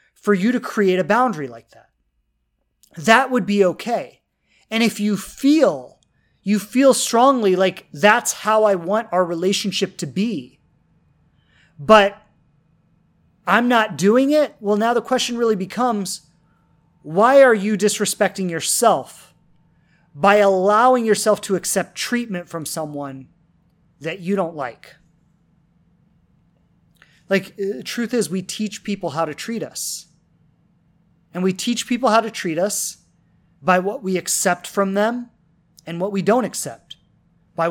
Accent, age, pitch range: American, 30-49, 170-220 Hz